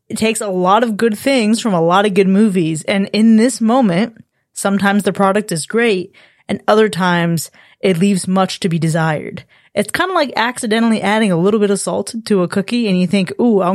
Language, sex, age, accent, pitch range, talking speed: English, female, 20-39, American, 175-225 Hz, 220 wpm